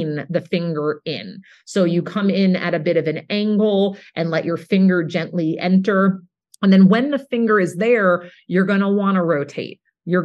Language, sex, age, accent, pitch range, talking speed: English, female, 40-59, American, 160-200 Hz, 195 wpm